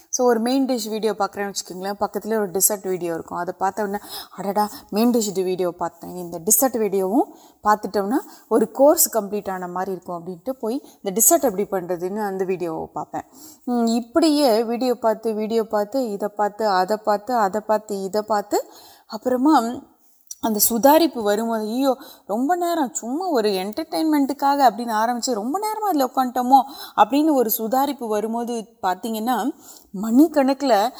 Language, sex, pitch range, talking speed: Urdu, female, 205-265 Hz, 110 wpm